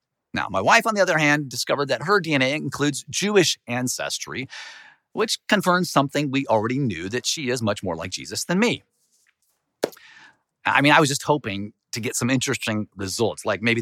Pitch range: 115-170 Hz